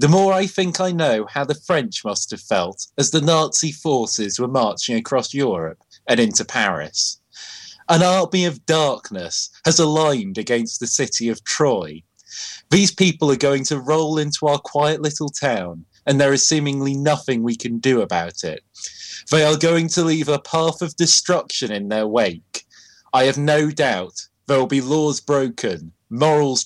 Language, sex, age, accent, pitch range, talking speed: English, male, 30-49, British, 120-165 Hz, 175 wpm